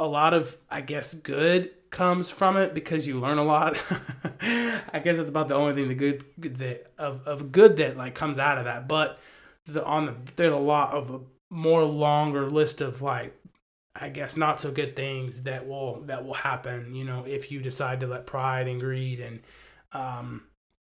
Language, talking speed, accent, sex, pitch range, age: English, 200 wpm, American, male, 130-160 Hz, 20-39